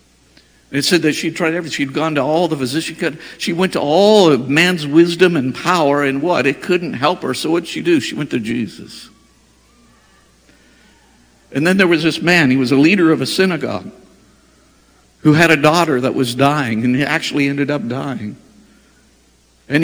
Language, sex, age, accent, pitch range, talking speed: English, male, 50-69, American, 135-180 Hz, 190 wpm